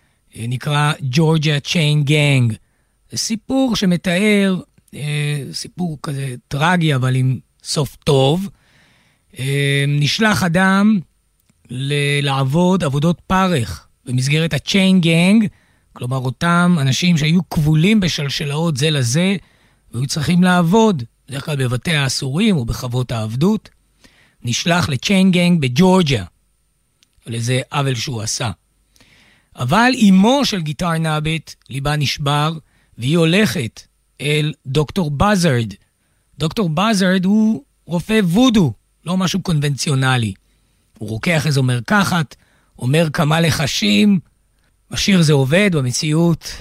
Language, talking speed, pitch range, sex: Hebrew, 105 wpm, 130-185 Hz, male